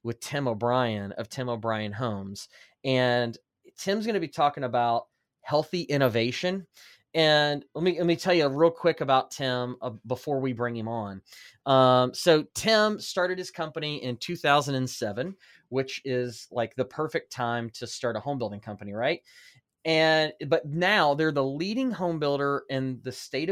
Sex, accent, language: male, American, English